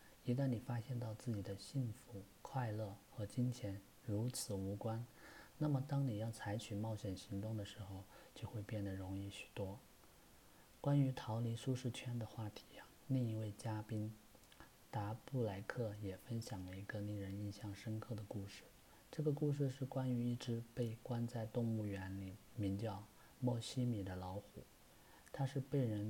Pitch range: 100-120 Hz